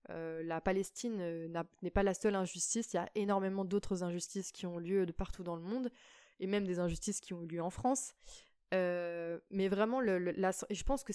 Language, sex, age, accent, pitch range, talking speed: French, female, 20-39, French, 185-230 Hz, 215 wpm